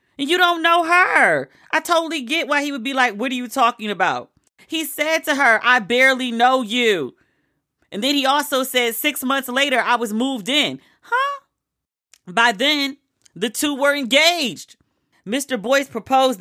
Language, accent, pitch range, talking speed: English, American, 230-300 Hz, 175 wpm